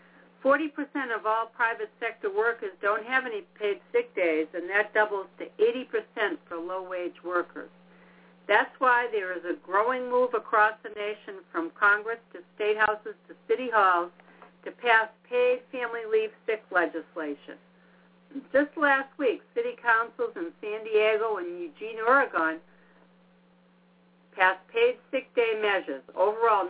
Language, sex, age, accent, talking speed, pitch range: English, female, 60-79, American, 140 wpm, 175-270 Hz